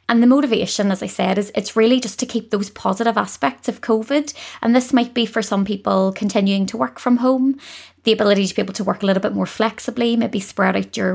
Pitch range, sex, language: 190-230 Hz, female, English